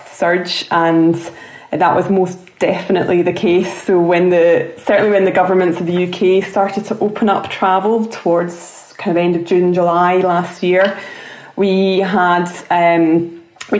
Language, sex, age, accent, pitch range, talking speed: English, female, 20-39, British, 175-200 Hz, 155 wpm